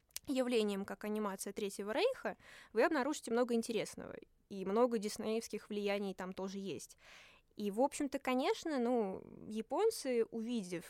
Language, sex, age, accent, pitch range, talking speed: Russian, female, 20-39, native, 200-250 Hz, 125 wpm